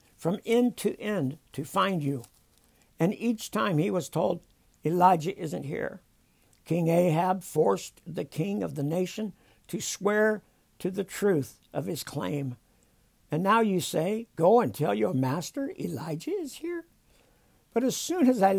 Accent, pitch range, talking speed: American, 160-215 Hz, 160 wpm